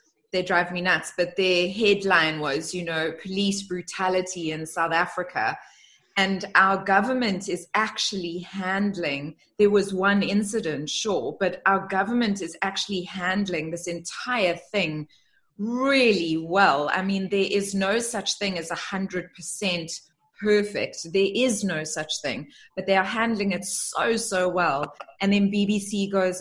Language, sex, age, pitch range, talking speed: English, female, 20-39, 170-200 Hz, 150 wpm